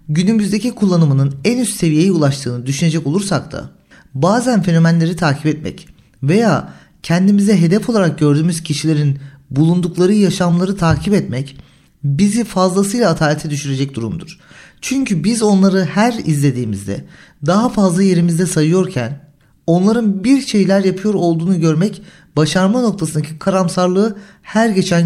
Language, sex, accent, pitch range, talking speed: Turkish, male, native, 155-195 Hz, 115 wpm